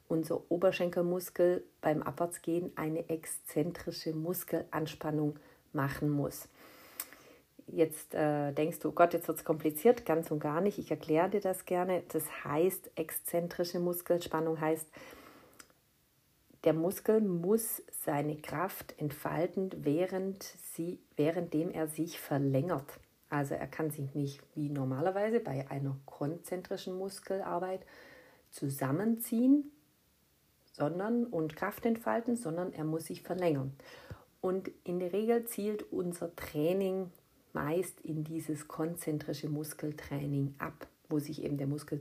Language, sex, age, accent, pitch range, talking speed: German, female, 40-59, German, 150-180 Hz, 115 wpm